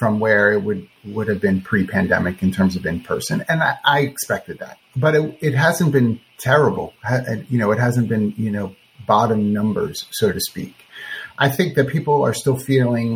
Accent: American